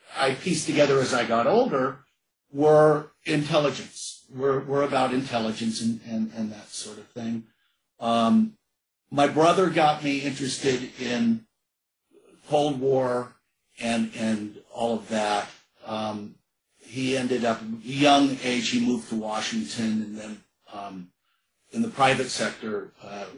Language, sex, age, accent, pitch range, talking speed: English, male, 50-69, American, 110-140 Hz, 135 wpm